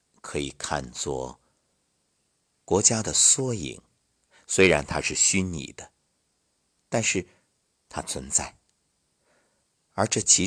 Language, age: Chinese, 50-69